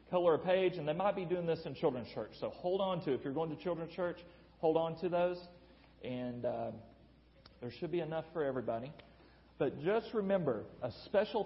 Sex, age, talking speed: male, 40-59, 205 wpm